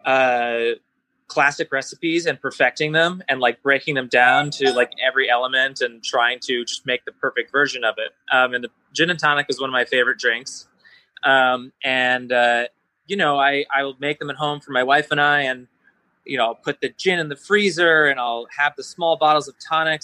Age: 20-39